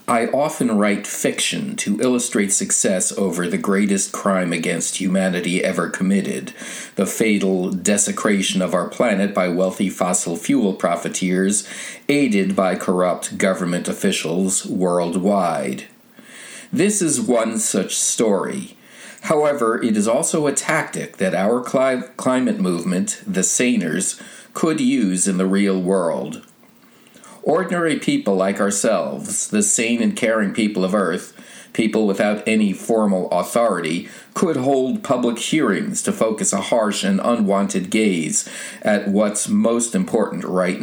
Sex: male